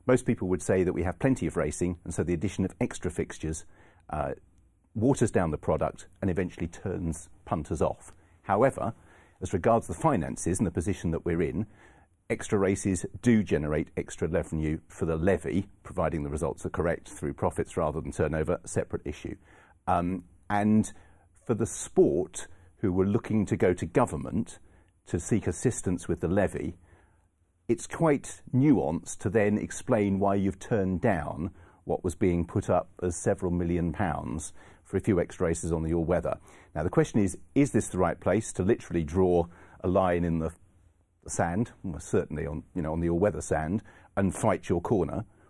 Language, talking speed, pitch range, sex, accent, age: English, 175 wpm, 85-100 Hz, male, British, 50-69